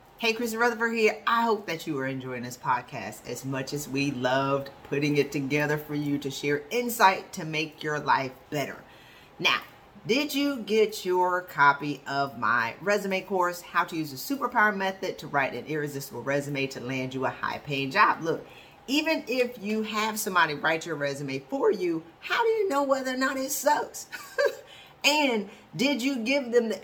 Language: English